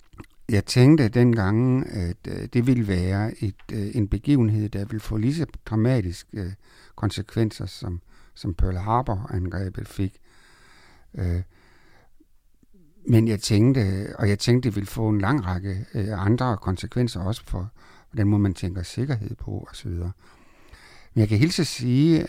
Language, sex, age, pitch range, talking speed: Danish, male, 60-79, 95-120 Hz, 135 wpm